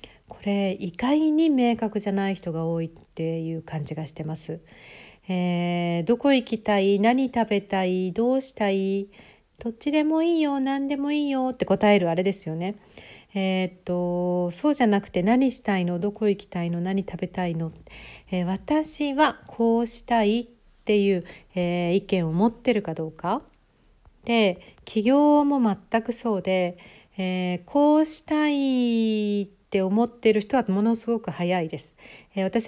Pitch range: 180-245 Hz